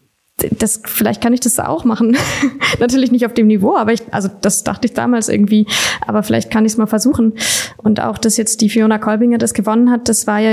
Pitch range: 210-235 Hz